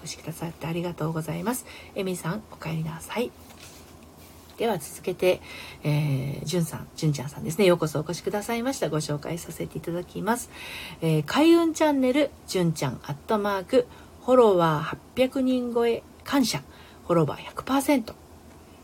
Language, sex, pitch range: Japanese, female, 145-235 Hz